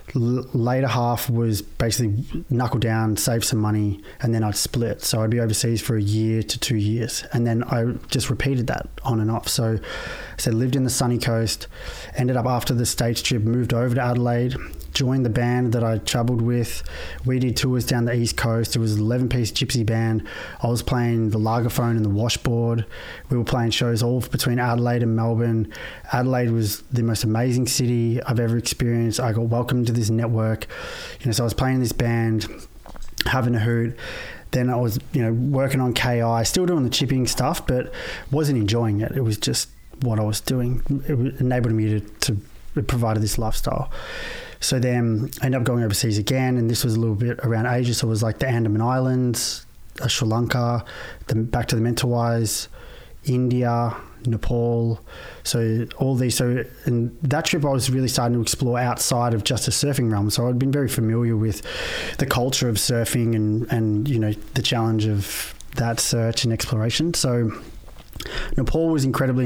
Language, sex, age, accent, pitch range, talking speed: English, male, 20-39, Australian, 115-125 Hz, 195 wpm